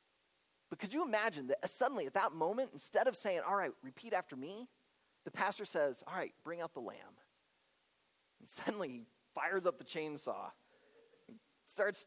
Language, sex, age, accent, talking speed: English, male, 30-49, American, 170 wpm